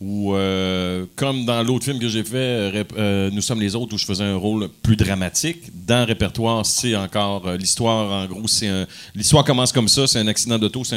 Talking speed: 225 wpm